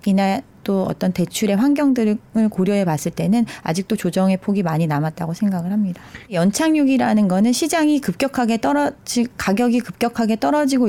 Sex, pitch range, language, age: female, 180-240 Hz, Korean, 30-49